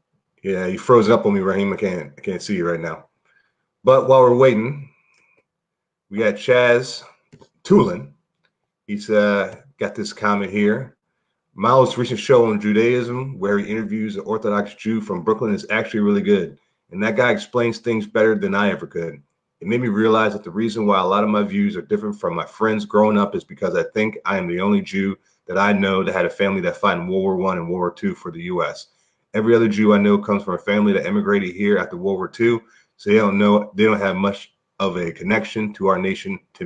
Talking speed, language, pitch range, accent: 225 wpm, English, 105-135 Hz, American